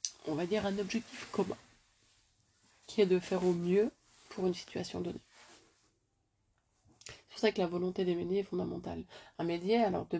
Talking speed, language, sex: 175 wpm, French, female